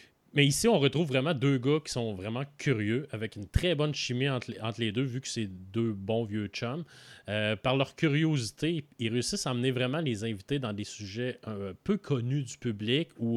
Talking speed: 215 wpm